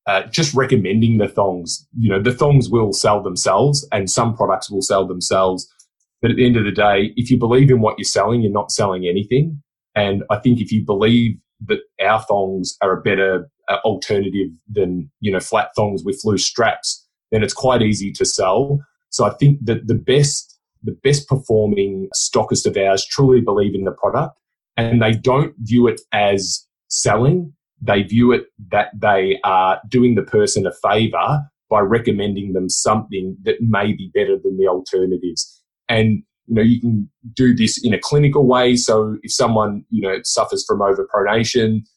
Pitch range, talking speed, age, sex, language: 100-130 Hz, 180 wpm, 20-39, male, English